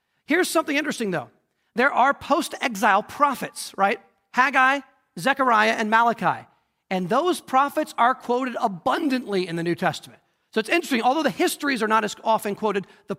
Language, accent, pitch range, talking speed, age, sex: English, American, 185-235 Hz, 160 wpm, 40-59, male